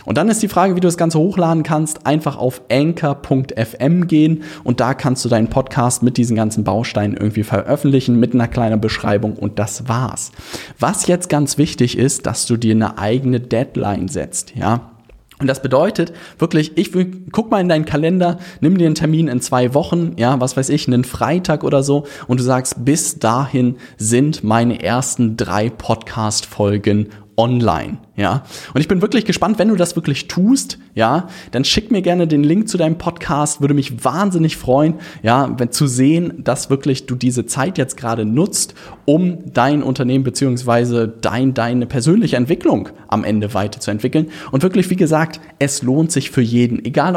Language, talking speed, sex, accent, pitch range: German, 180 wpm, male, German, 120-155 Hz